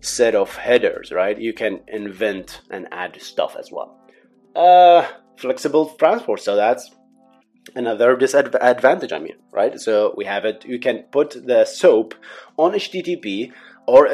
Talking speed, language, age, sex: 145 wpm, English, 30-49, male